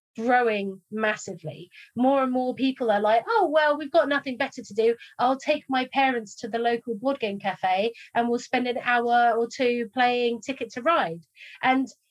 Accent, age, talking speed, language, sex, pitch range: British, 30-49, 190 wpm, English, female, 220-260 Hz